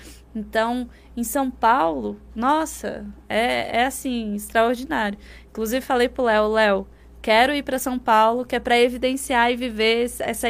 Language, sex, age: Portuguese, female, 10-29